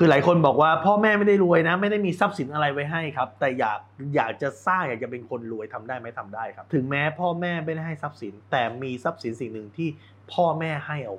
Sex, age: male, 20-39